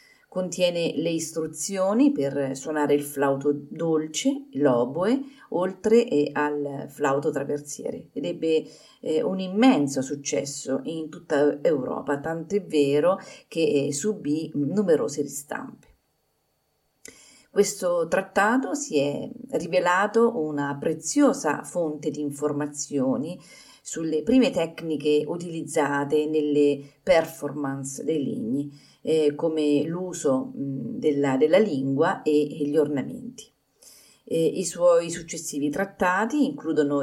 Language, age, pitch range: Italian, 40-59, 145-205 Hz